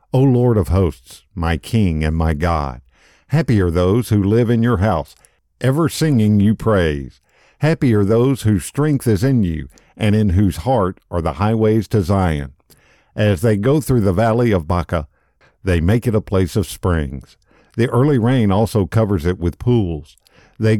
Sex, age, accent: male, 50-69, American